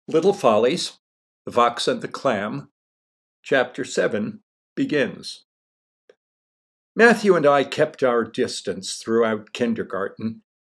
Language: English